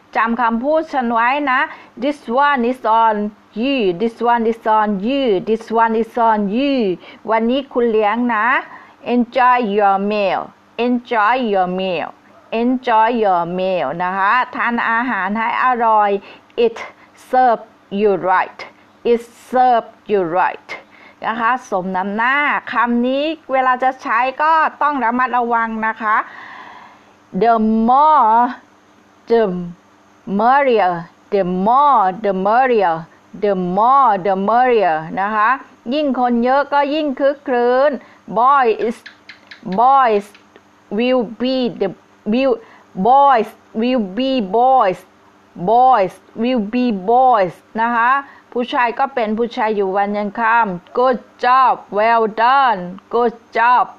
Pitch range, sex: 210-255 Hz, female